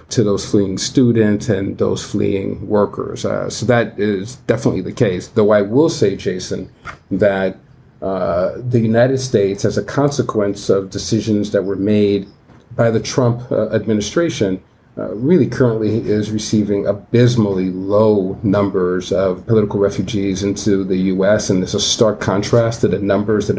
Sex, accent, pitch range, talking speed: male, American, 100-115 Hz, 155 wpm